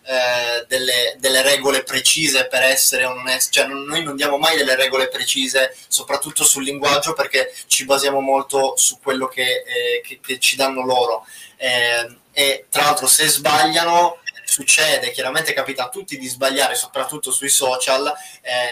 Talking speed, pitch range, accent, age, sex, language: 160 wpm, 135-160 Hz, native, 20-39, male, Italian